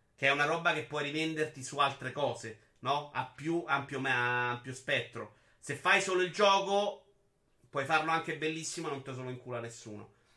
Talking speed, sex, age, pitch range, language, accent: 190 wpm, male, 30-49, 125-155 Hz, Italian, native